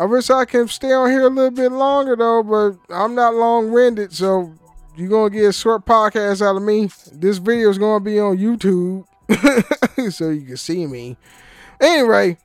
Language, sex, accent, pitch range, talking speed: English, male, American, 150-210 Hz, 190 wpm